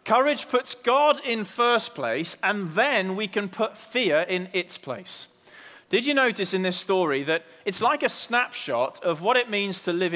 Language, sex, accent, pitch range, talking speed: English, male, British, 165-225 Hz, 190 wpm